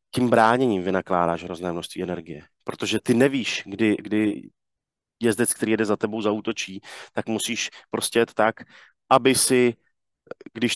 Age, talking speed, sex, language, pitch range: 30-49, 140 wpm, male, Slovak, 100-125 Hz